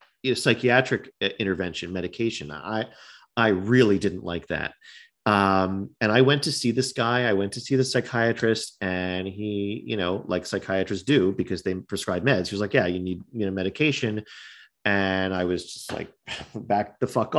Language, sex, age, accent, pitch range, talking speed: English, male, 40-59, American, 95-125 Hz, 175 wpm